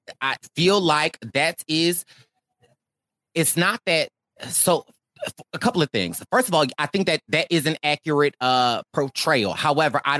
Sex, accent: male, American